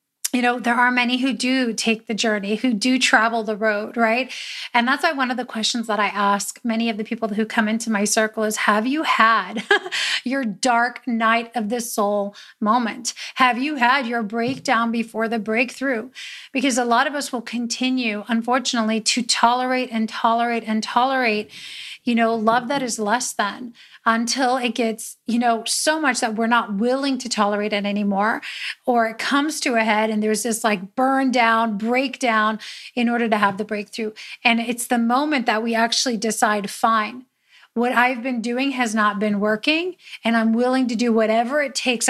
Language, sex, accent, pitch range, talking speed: English, female, American, 225-255 Hz, 190 wpm